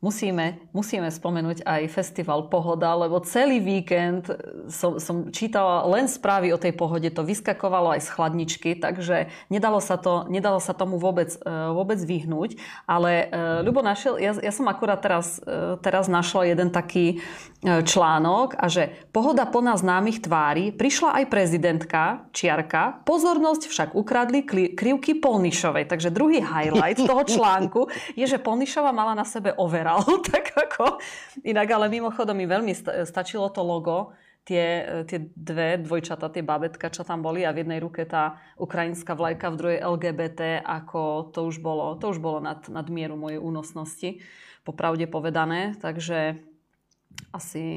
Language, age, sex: Slovak, 30-49, female